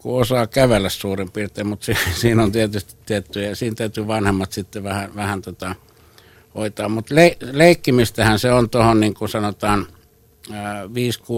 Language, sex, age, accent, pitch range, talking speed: Finnish, male, 60-79, native, 100-110 Hz, 150 wpm